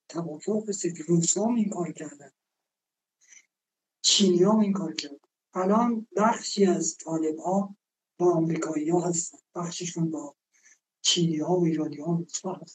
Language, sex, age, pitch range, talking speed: Persian, male, 60-79, 175-230 Hz, 105 wpm